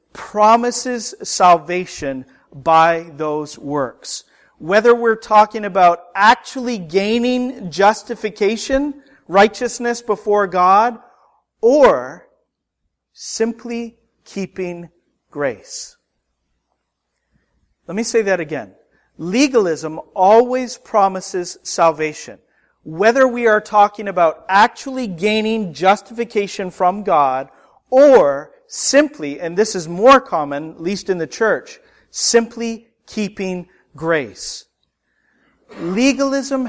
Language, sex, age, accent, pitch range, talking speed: English, male, 40-59, American, 170-240 Hz, 90 wpm